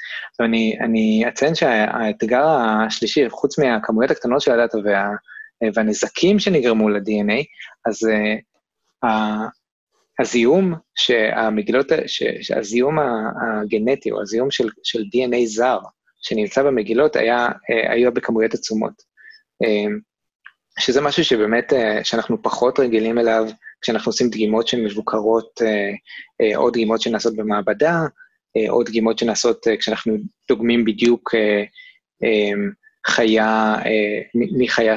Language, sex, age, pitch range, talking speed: Hebrew, male, 20-39, 110-125 Hz, 90 wpm